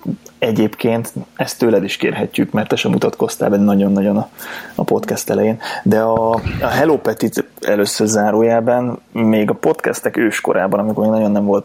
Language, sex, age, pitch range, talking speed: Hungarian, male, 20-39, 105-115 Hz, 160 wpm